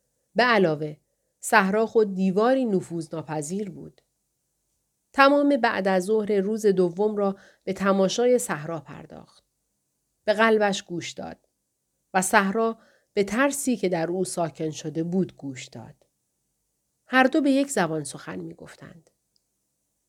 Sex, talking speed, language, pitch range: female, 125 wpm, Persian, 175-230 Hz